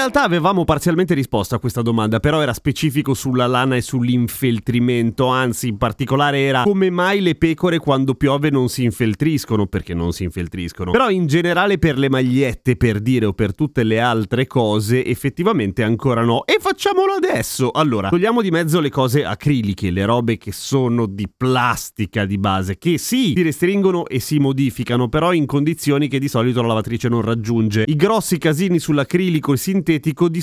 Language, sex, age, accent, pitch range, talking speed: Italian, male, 30-49, native, 110-165 Hz, 180 wpm